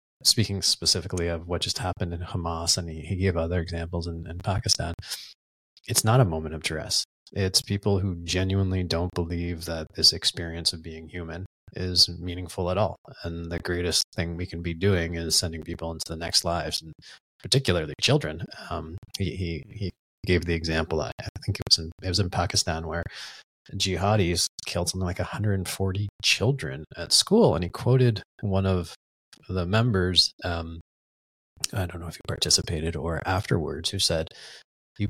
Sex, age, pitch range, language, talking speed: male, 30-49, 80-100 Hz, English, 175 wpm